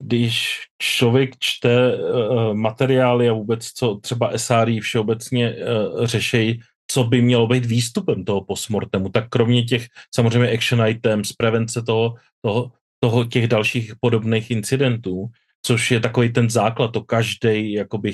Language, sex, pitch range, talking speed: Czech, male, 115-125 Hz, 140 wpm